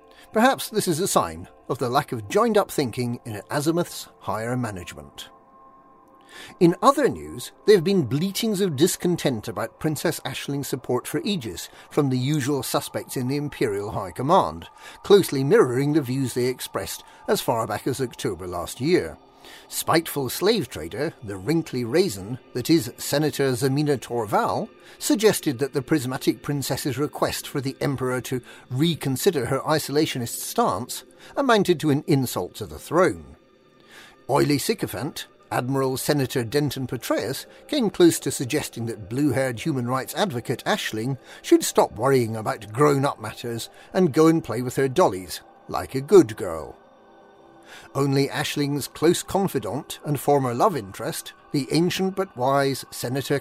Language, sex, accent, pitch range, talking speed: English, male, British, 130-175 Hz, 145 wpm